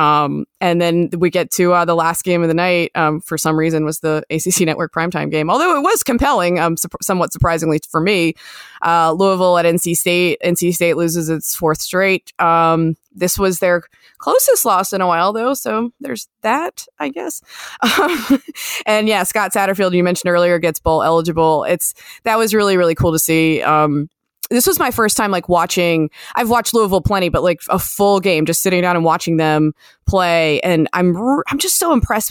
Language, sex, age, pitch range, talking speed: English, female, 20-39, 160-190 Hz, 200 wpm